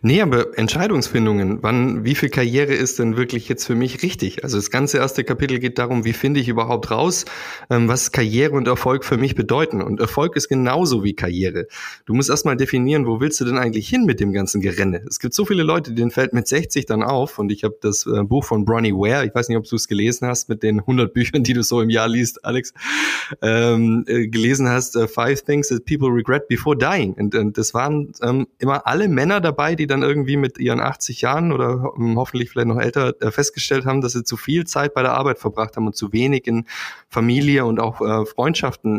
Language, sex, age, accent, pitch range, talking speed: German, male, 20-39, German, 110-135 Hz, 220 wpm